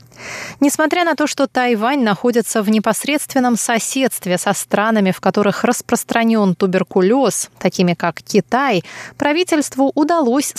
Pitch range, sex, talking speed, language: 195-255 Hz, female, 115 wpm, Russian